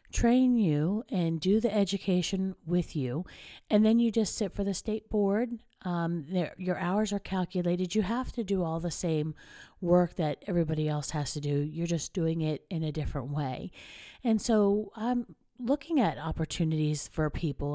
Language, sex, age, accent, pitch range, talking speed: English, female, 50-69, American, 165-210 Hz, 180 wpm